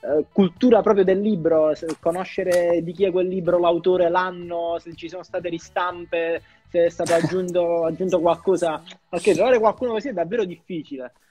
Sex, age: male, 20-39